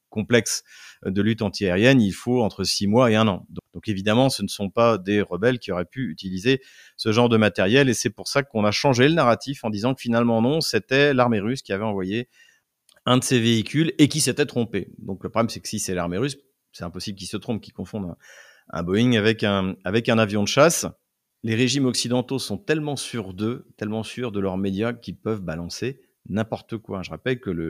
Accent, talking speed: French, 225 wpm